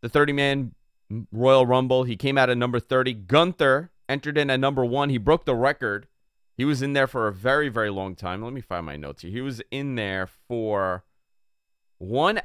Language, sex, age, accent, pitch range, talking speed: English, male, 30-49, American, 105-140 Hz, 200 wpm